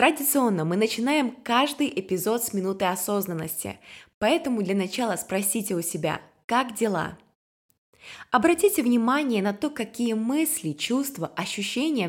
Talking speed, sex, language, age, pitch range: 120 wpm, female, Ukrainian, 20-39, 170-245 Hz